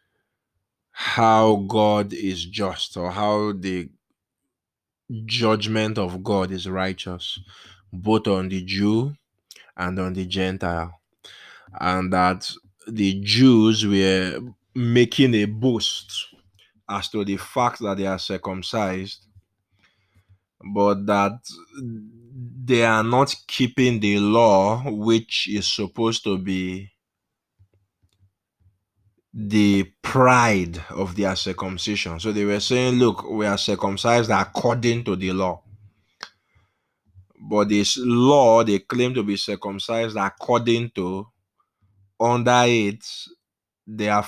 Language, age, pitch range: English, 20-39, 95-115 Hz